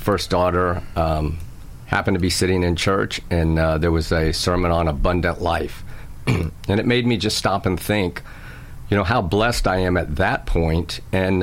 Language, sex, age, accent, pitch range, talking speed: English, male, 50-69, American, 80-95 Hz, 190 wpm